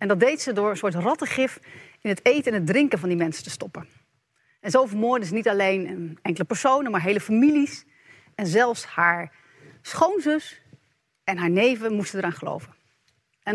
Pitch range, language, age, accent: 175-245 Hz, Dutch, 40-59, Dutch